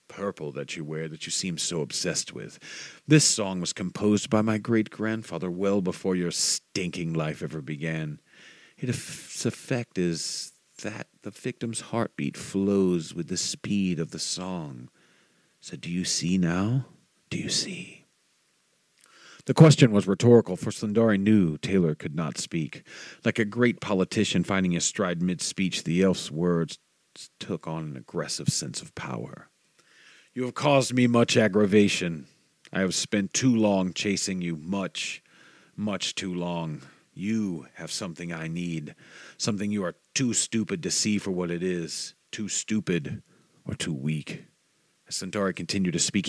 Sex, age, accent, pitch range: male, 40-59, American, 85-110 Hz